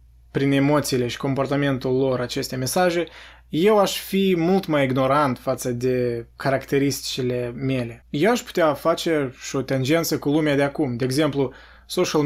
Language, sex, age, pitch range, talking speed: Romanian, male, 20-39, 130-160 Hz, 150 wpm